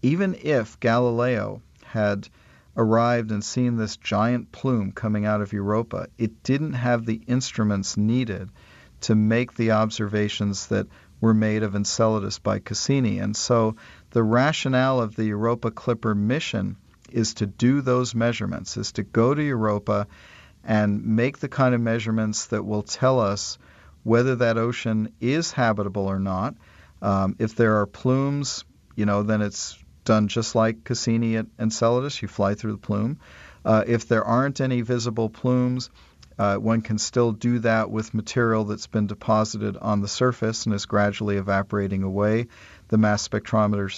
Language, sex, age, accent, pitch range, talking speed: Dutch, male, 50-69, American, 105-120 Hz, 160 wpm